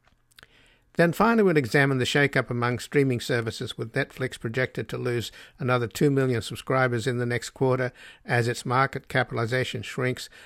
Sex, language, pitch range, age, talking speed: male, English, 115-130 Hz, 60-79, 155 wpm